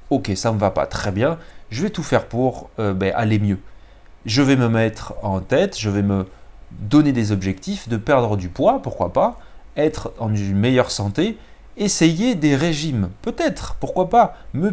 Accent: French